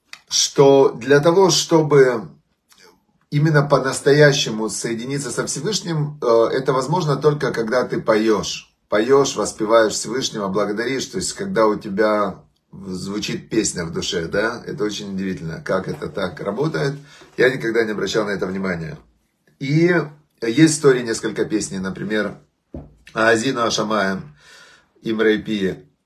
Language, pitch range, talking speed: Russian, 105-140 Hz, 120 wpm